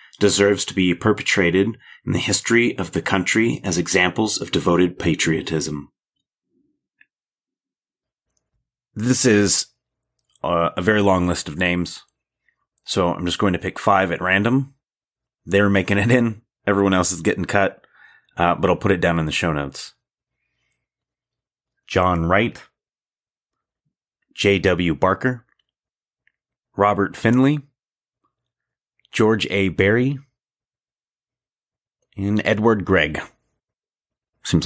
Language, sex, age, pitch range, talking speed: English, male, 30-49, 90-115 Hz, 115 wpm